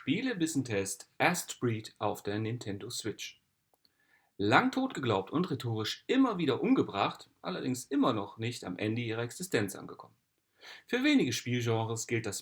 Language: German